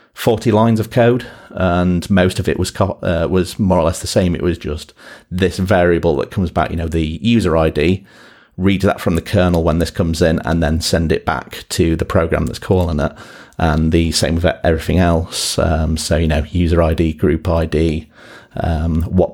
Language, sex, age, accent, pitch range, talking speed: English, male, 40-59, British, 80-100 Hz, 205 wpm